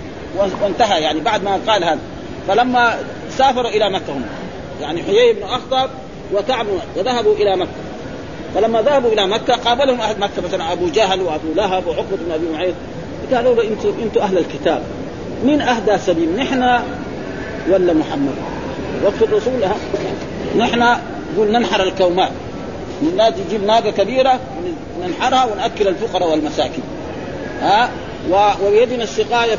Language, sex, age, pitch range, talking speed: Arabic, male, 40-59, 190-250 Hz, 130 wpm